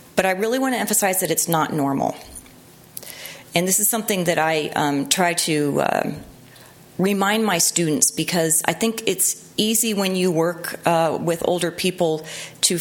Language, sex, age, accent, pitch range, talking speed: English, female, 30-49, American, 145-175 Hz, 170 wpm